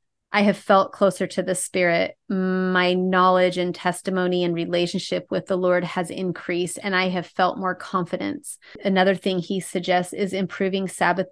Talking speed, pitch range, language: 165 wpm, 175-195 Hz, English